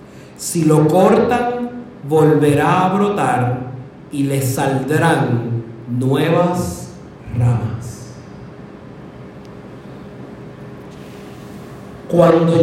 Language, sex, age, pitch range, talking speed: Spanish, male, 40-59, 150-210 Hz, 55 wpm